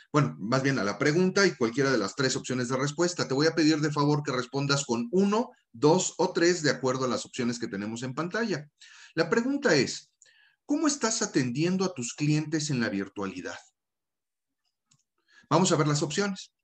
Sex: male